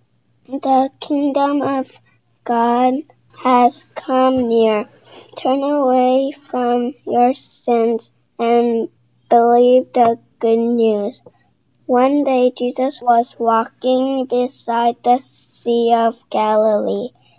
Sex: male